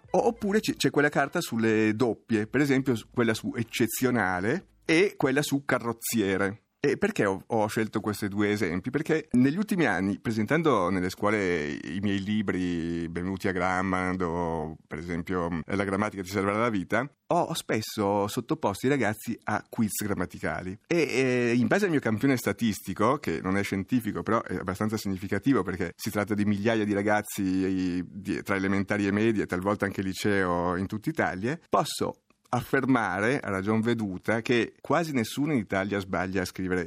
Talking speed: 160 wpm